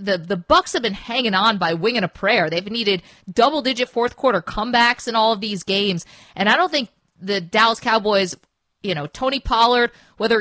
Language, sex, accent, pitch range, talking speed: English, female, American, 180-235 Hz, 190 wpm